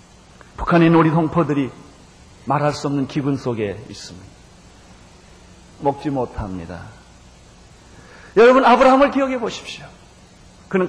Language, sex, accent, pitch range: Korean, male, native, 135-195 Hz